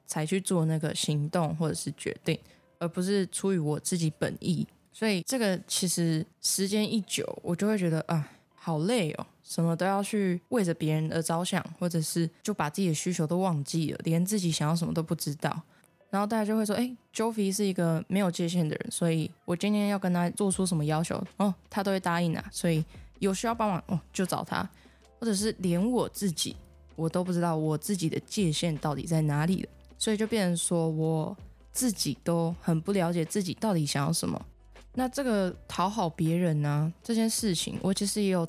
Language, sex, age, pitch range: Chinese, female, 10-29, 160-195 Hz